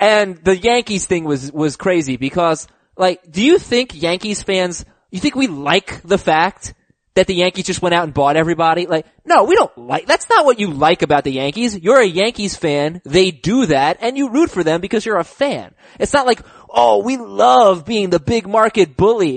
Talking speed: 215 wpm